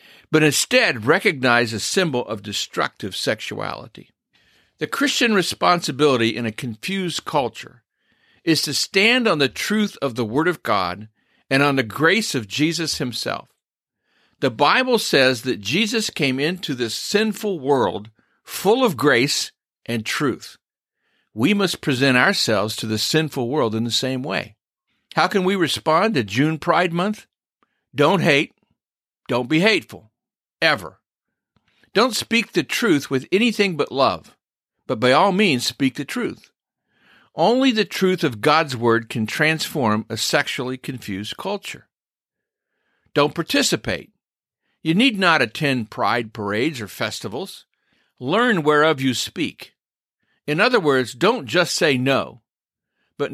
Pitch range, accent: 125-195 Hz, American